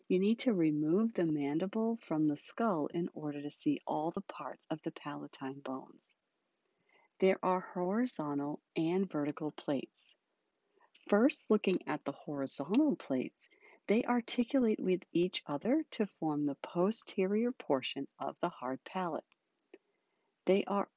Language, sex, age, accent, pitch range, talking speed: English, female, 50-69, American, 150-225 Hz, 135 wpm